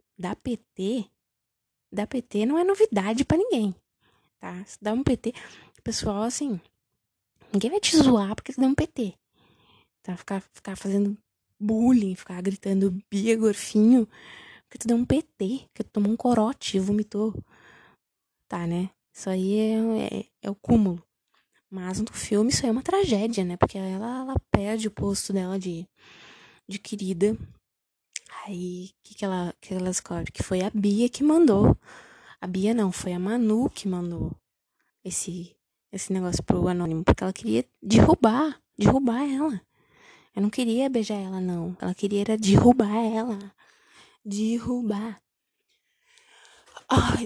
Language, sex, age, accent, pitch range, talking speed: Portuguese, female, 20-39, Brazilian, 190-235 Hz, 155 wpm